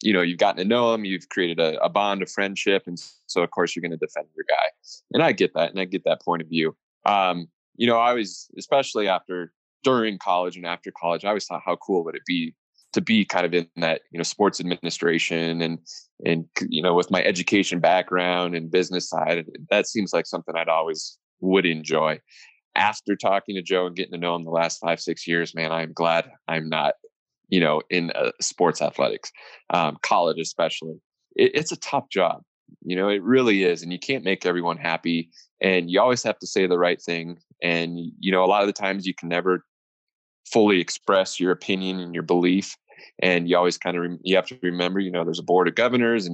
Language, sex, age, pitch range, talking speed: English, male, 20-39, 85-100 Hz, 220 wpm